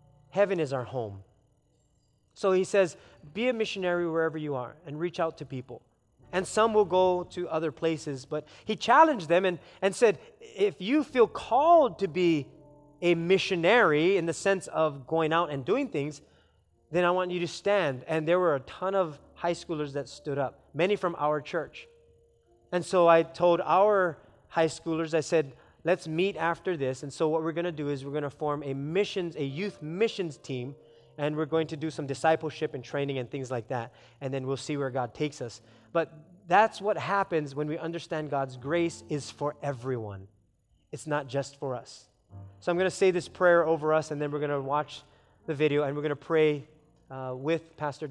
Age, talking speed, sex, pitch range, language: 30-49, 205 wpm, male, 135-175 Hz, English